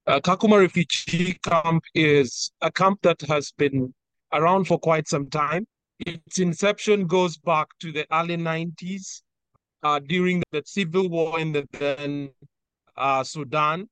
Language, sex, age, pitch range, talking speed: English, male, 30-49, 150-185 Hz, 140 wpm